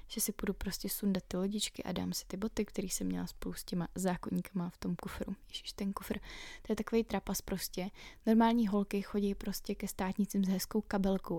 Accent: native